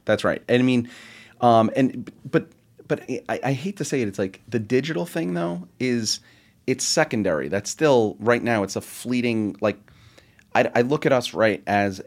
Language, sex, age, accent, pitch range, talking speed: English, male, 30-49, American, 100-115 Hz, 195 wpm